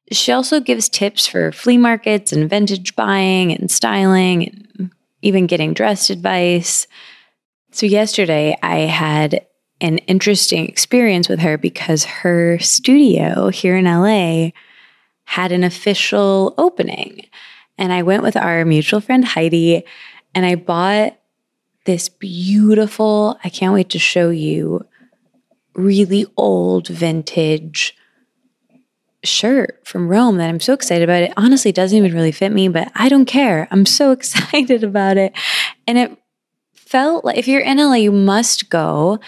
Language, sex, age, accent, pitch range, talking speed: English, female, 20-39, American, 175-230 Hz, 140 wpm